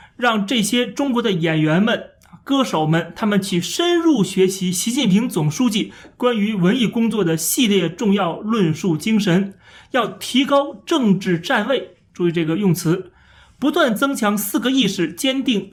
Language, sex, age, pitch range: Chinese, male, 30-49, 175-240 Hz